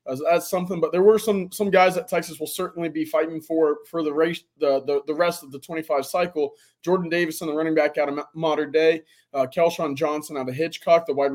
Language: English